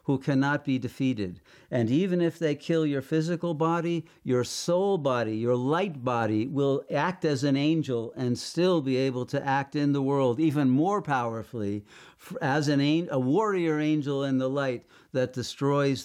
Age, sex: 50-69, male